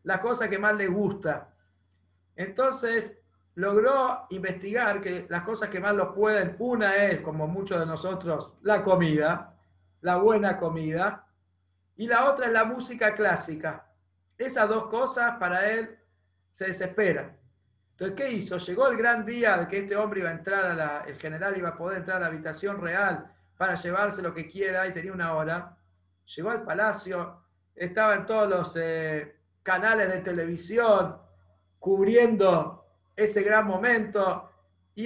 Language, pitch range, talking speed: Spanish, 155-210 Hz, 155 wpm